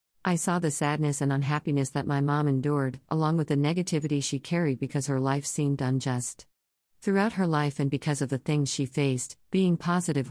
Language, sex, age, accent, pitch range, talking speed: English, female, 50-69, American, 130-165 Hz, 190 wpm